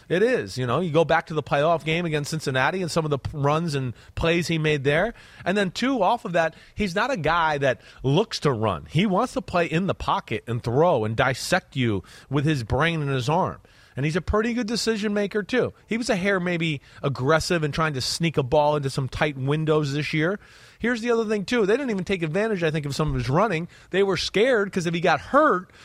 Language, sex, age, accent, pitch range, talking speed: English, male, 30-49, American, 140-190 Hz, 250 wpm